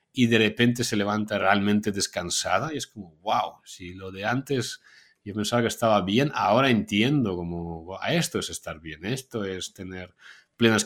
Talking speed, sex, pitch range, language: 180 wpm, male, 95-120 Hz, Spanish